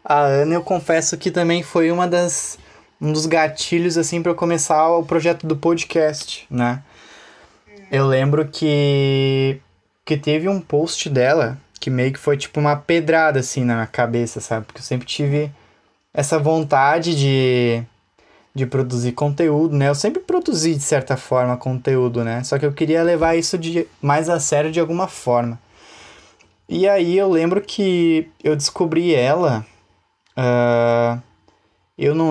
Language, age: Portuguese, 10-29